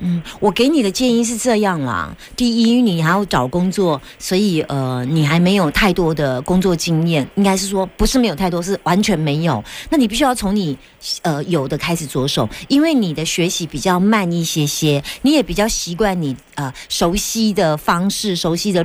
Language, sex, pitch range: Chinese, female, 155-220 Hz